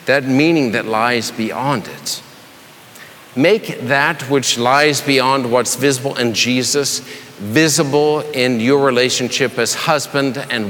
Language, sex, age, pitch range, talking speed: English, male, 50-69, 135-175 Hz, 125 wpm